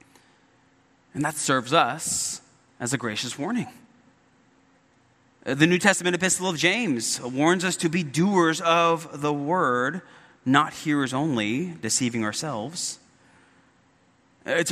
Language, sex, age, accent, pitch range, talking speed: English, male, 30-49, American, 130-185 Hz, 115 wpm